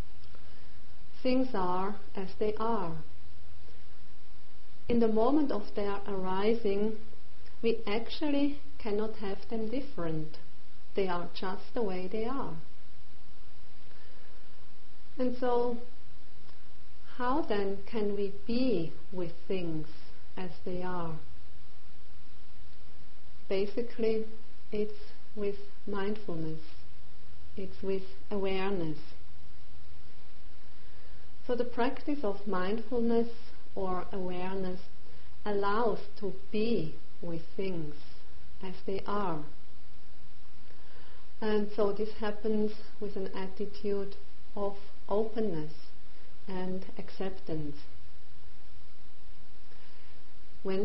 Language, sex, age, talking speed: English, female, 40-59, 85 wpm